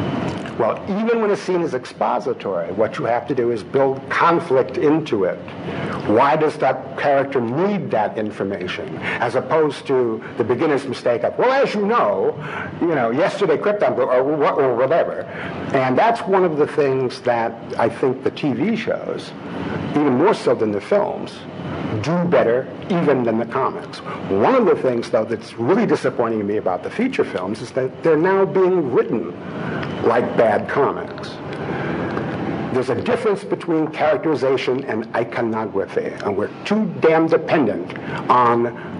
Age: 60-79